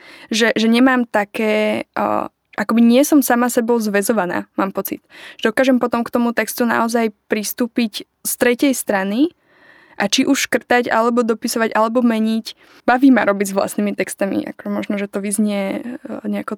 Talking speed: 160 wpm